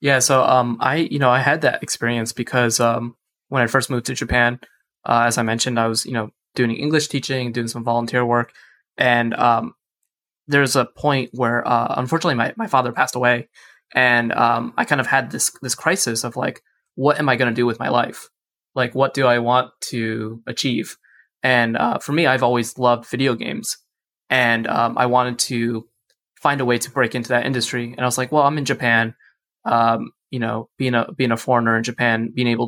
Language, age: English, 20-39